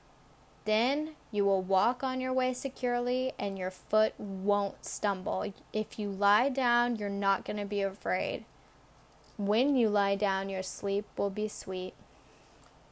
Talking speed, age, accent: 150 wpm, 10-29, American